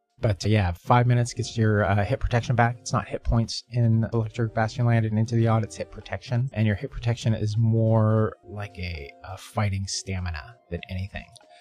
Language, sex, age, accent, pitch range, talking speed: English, male, 30-49, American, 100-115 Hz, 200 wpm